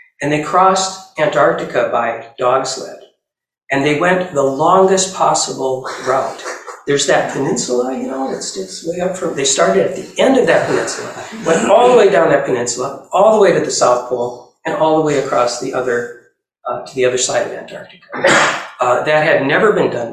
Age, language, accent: 40-59, English, American